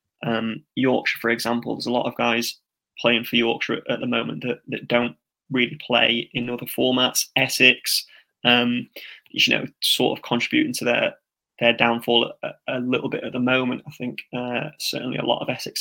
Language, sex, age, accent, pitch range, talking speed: English, male, 20-39, British, 120-130 Hz, 195 wpm